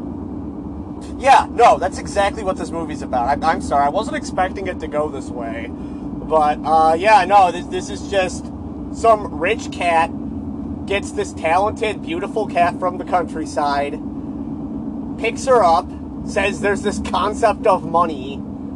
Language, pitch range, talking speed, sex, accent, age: English, 215-275 Hz, 150 wpm, male, American, 30-49